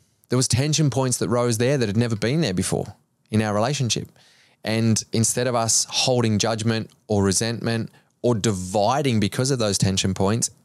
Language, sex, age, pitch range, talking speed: English, male, 20-39, 100-115 Hz, 175 wpm